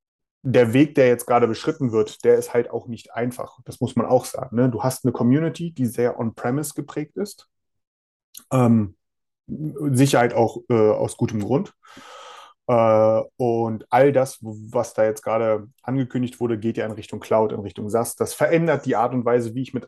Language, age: German, 30-49